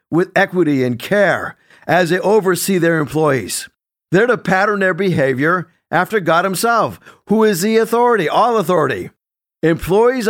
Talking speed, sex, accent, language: 140 wpm, male, American, English